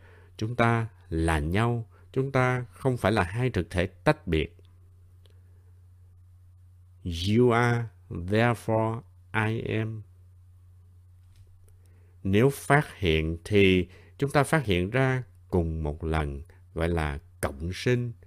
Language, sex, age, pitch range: Vietnamese, male, 60-79, 90-115 Hz